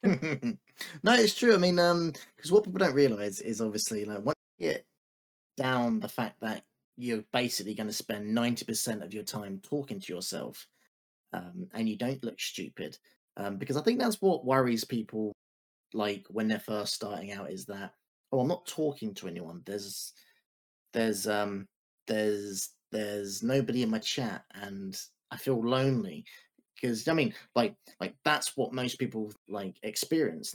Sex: male